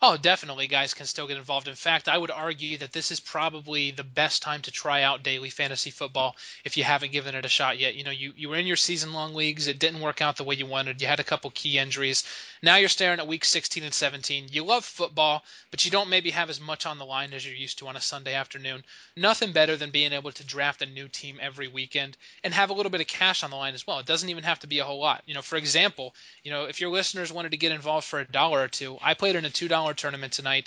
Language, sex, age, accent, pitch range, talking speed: English, male, 20-39, American, 140-170 Hz, 280 wpm